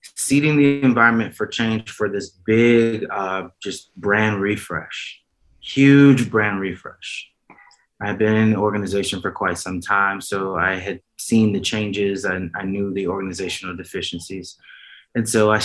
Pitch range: 95-115 Hz